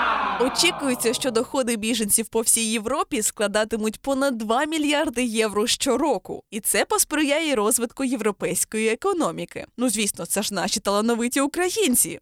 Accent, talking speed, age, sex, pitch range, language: native, 130 wpm, 20-39, female, 215-290 Hz, Ukrainian